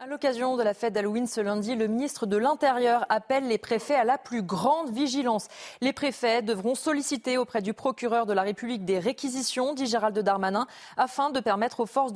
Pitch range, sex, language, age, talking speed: 210-255 Hz, female, French, 20-39, 195 wpm